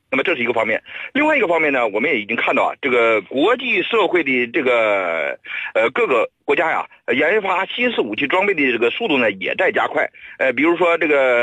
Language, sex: Chinese, male